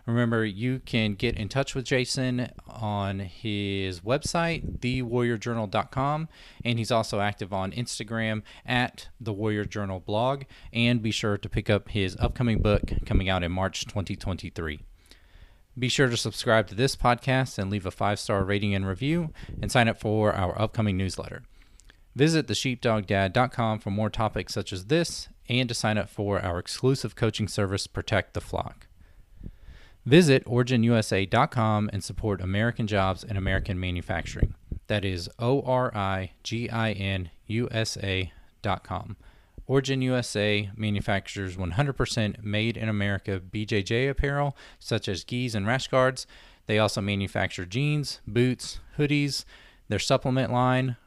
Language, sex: English, male